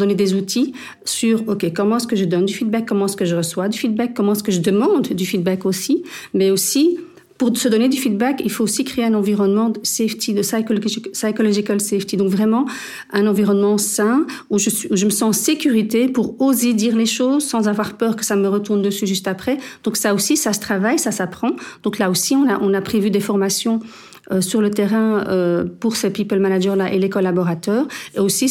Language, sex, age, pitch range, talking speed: Dutch, female, 50-69, 200-235 Hz, 225 wpm